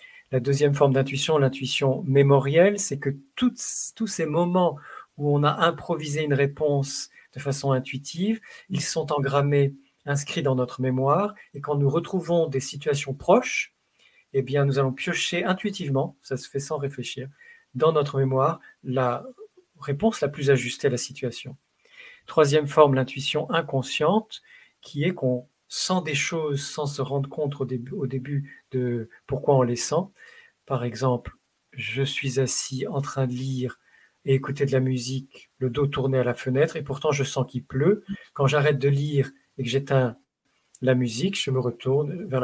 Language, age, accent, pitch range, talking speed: French, 40-59, French, 130-150 Hz, 165 wpm